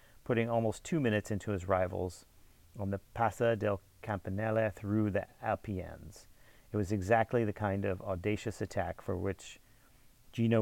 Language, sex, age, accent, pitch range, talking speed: English, male, 40-59, American, 95-110 Hz, 145 wpm